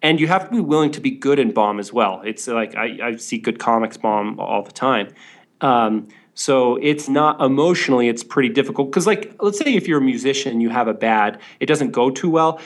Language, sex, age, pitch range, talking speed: English, male, 30-49, 115-145 Hz, 235 wpm